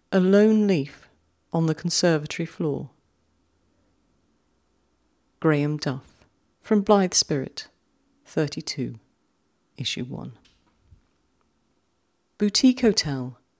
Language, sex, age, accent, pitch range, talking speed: English, female, 40-59, British, 135-200 Hz, 75 wpm